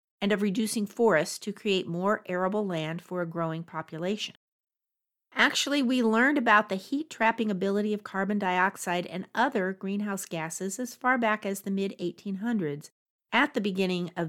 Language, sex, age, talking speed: English, female, 50-69, 155 wpm